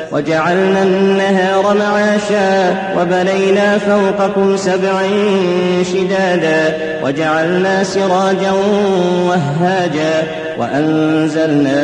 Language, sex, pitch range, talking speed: Arabic, male, 170-195 Hz, 55 wpm